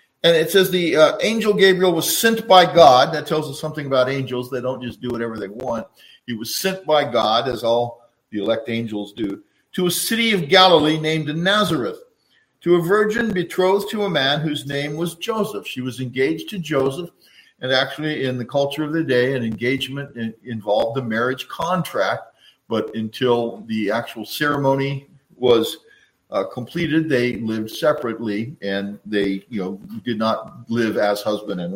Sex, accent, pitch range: male, American, 120-160 Hz